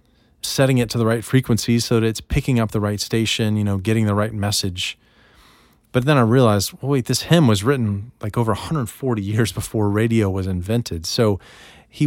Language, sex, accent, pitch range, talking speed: English, male, American, 100-130 Hz, 195 wpm